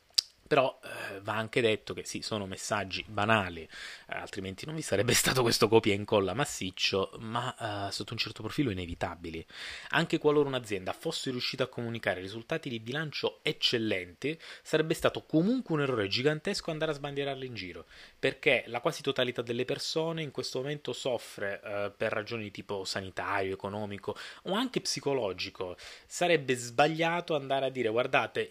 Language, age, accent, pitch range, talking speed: Italian, 20-39, native, 105-150 Hz, 160 wpm